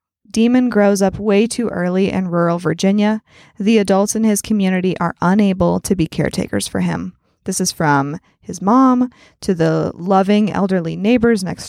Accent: American